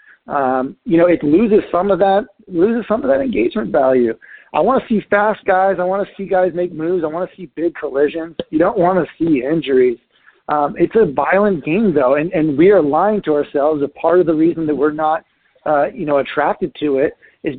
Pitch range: 150-190 Hz